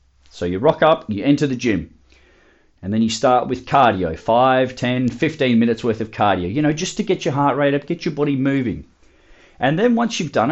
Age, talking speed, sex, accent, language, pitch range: 30-49, 220 wpm, male, Australian, English, 115-155 Hz